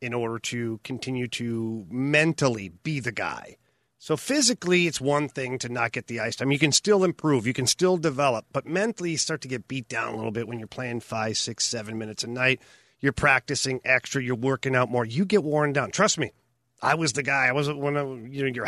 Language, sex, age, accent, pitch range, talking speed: English, male, 40-59, American, 125-145 Hz, 235 wpm